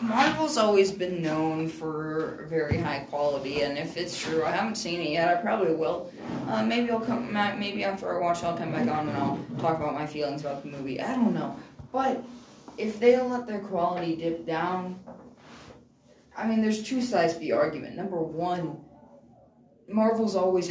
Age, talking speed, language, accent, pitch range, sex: 10-29, 190 wpm, English, American, 155-200 Hz, female